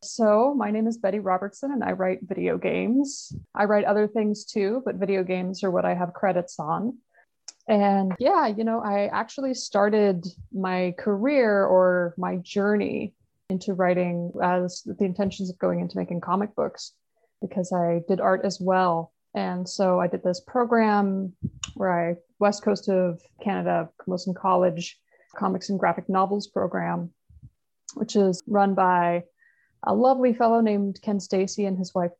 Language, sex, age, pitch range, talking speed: English, female, 20-39, 180-210 Hz, 160 wpm